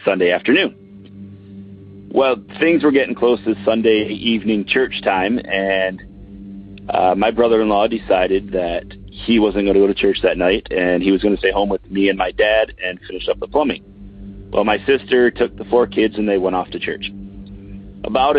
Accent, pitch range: American, 100-115 Hz